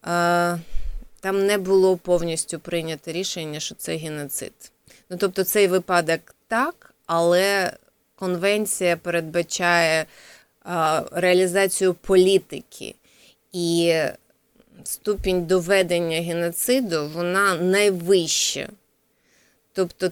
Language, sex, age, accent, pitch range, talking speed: Ukrainian, female, 20-39, native, 170-195 Hz, 80 wpm